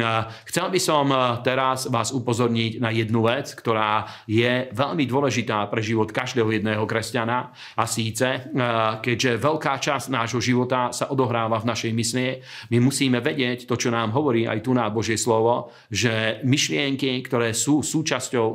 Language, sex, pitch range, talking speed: Slovak, male, 115-135 Hz, 150 wpm